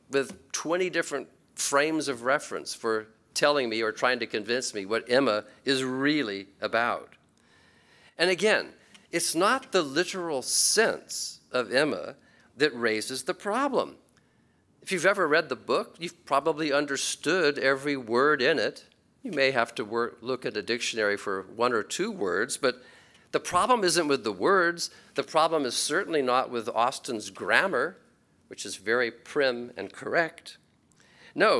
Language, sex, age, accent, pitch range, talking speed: English, male, 50-69, American, 125-170 Hz, 150 wpm